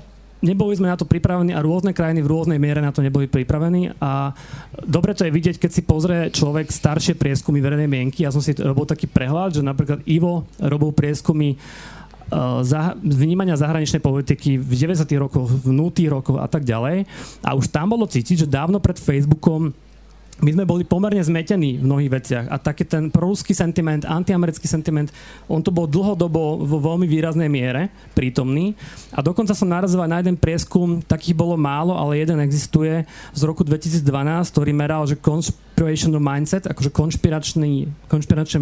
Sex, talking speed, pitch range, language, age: male, 170 wpm, 145-170 Hz, Slovak, 30-49